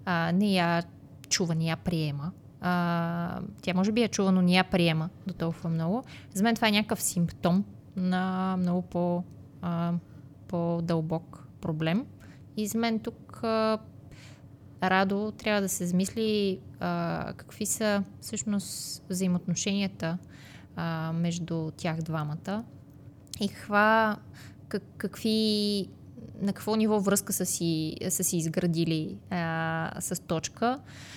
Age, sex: 20-39, female